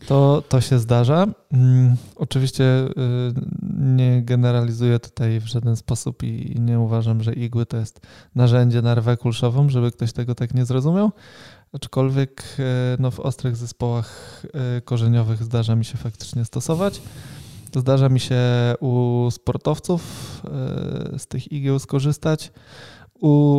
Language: Polish